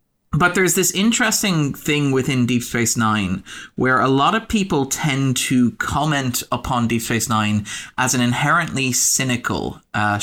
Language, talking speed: English, 155 wpm